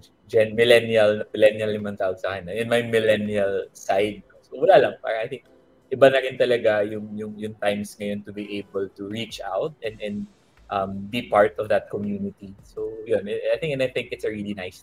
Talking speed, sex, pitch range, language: 200 wpm, male, 100-130 Hz, Filipino